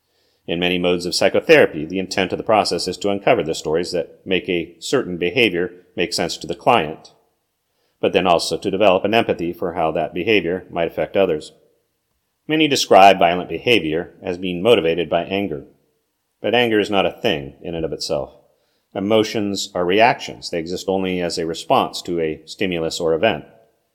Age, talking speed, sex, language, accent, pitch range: 40-59, 180 wpm, male, English, American, 85-100 Hz